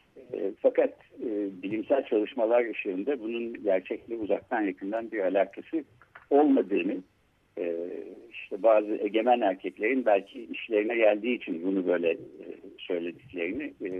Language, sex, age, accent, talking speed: Turkish, male, 60-79, native, 95 wpm